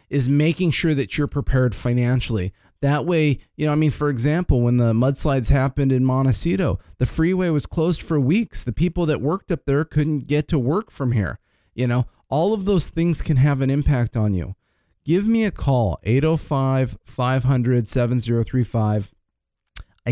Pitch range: 120-145 Hz